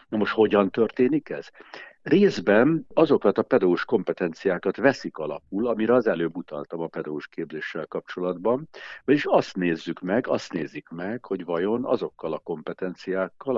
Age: 60-79